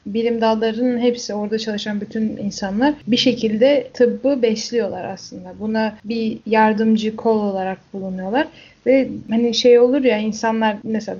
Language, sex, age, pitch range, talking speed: Turkish, female, 10-29, 215-245 Hz, 135 wpm